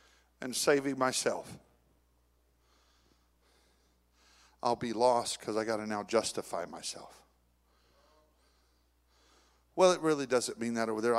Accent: American